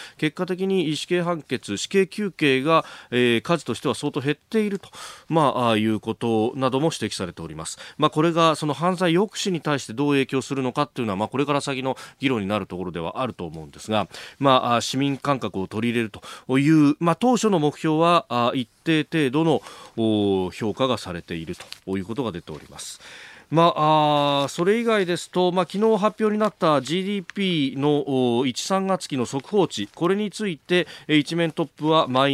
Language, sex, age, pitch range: Japanese, male, 40-59, 115-170 Hz